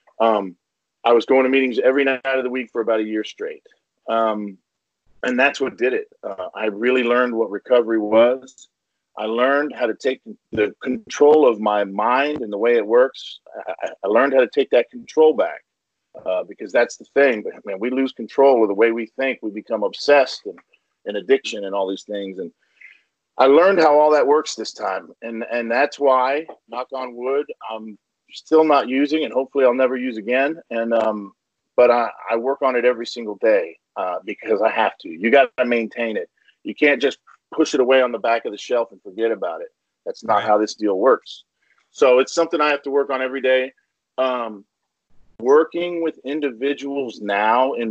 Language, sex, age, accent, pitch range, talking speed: English, male, 40-59, American, 115-145 Hz, 205 wpm